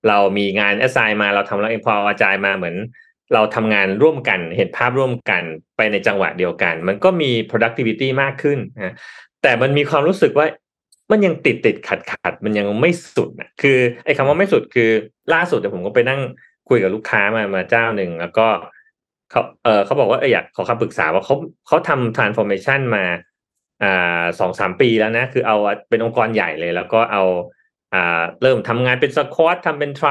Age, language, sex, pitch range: 30-49, Thai, male, 100-135 Hz